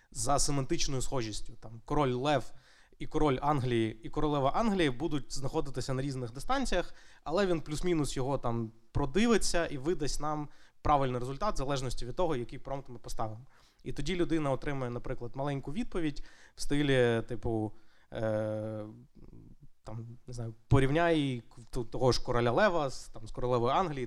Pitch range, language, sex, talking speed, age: 120-155 Hz, Ukrainian, male, 130 wpm, 20-39